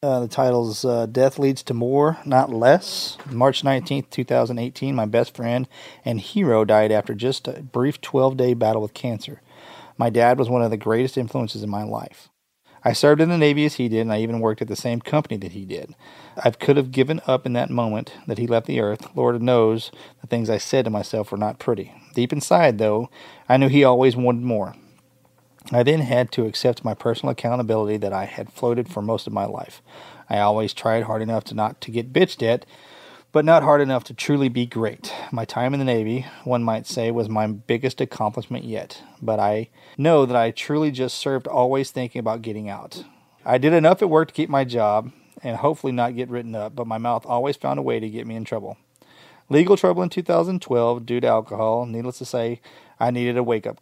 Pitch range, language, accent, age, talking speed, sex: 110-135 Hz, English, American, 40-59, 215 wpm, male